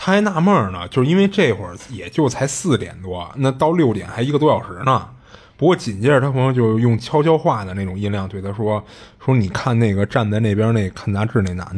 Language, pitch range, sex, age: Chinese, 100-135 Hz, male, 20-39